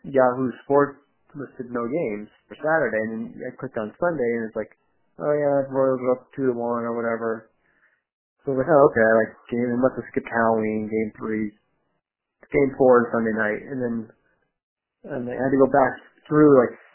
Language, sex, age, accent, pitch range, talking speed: English, male, 30-49, American, 105-130 Hz, 200 wpm